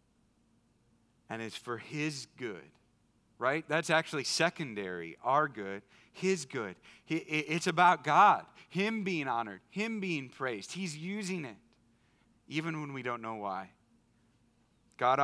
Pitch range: 115-155 Hz